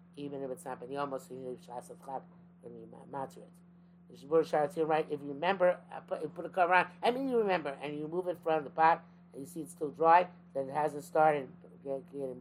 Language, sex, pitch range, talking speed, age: English, male, 140-175 Hz, 220 wpm, 50-69